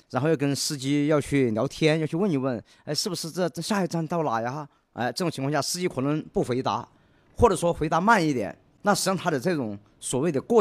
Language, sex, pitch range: Chinese, male, 115-185 Hz